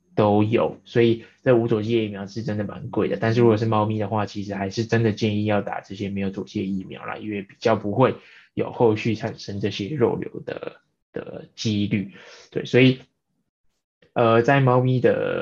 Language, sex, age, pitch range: Chinese, male, 20-39, 105-115 Hz